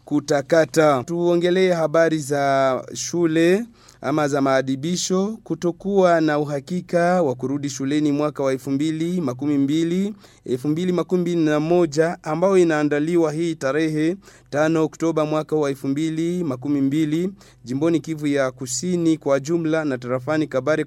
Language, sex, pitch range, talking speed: French, male, 140-170 Hz, 105 wpm